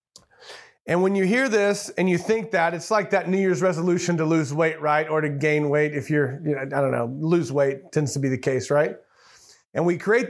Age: 40-59